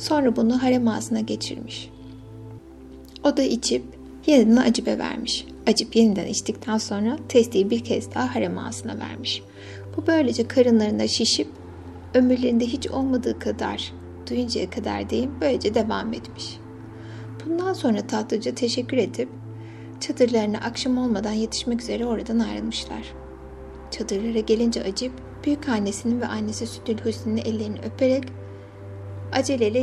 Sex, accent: female, native